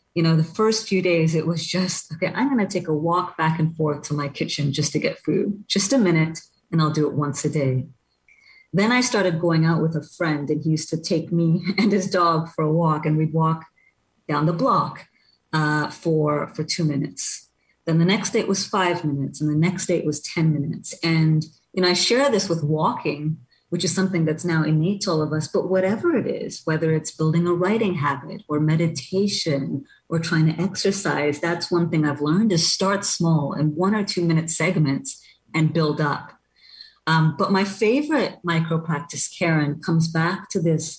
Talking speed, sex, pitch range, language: 210 wpm, female, 155-185 Hz, English